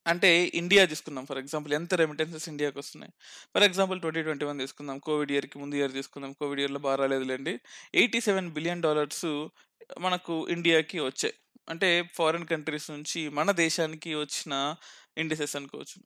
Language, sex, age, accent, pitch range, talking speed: Telugu, male, 20-39, native, 150-185 Hz, 150 wpm